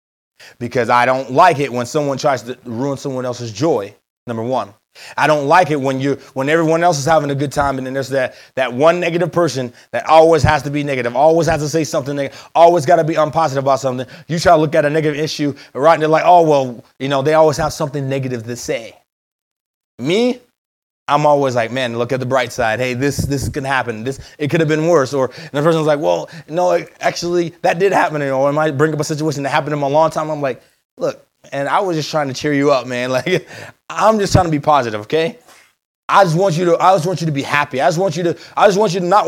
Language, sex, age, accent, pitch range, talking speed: English, male, 30-49, American, 140-180 Hz, 265 wpm